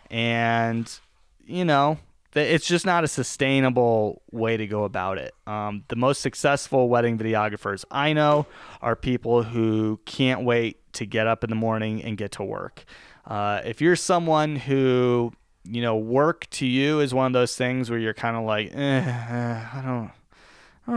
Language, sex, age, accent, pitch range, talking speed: English, male, 20-39, American, 110-155 Hz, 175 wpm